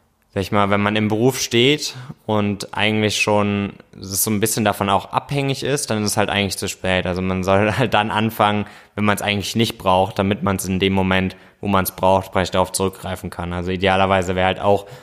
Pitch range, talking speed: 95-105 Hz, 225 wpm